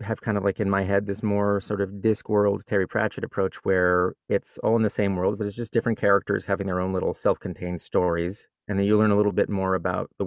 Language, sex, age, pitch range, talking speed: English, male, 30-49, 95-115 Hz, 255 wpm